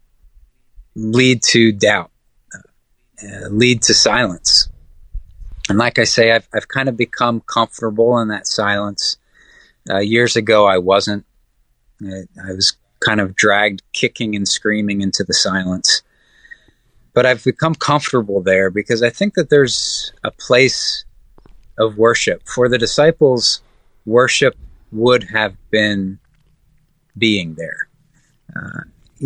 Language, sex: English, male